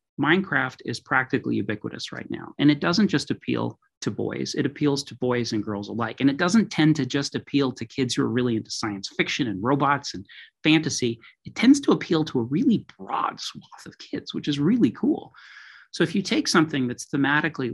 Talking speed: 205 wpm